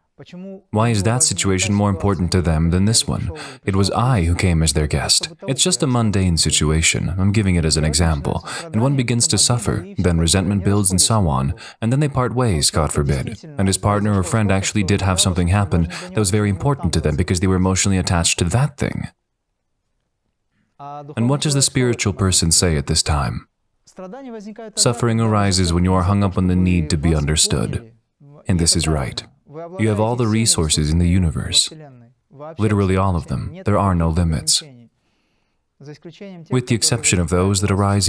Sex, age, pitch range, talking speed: male, 20-39, 90-120 Hz, 190 wpm